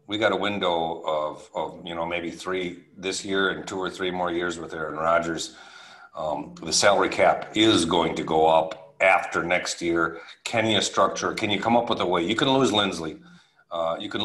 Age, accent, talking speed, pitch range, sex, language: 50-69, American, 210 wpm, 85-100 Hz, male, English